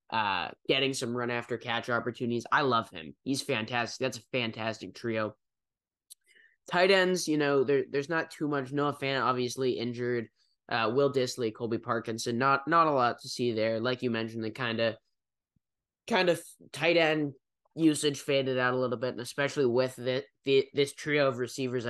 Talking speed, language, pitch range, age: 180 wpm, English, 115-140 Hz, 10-29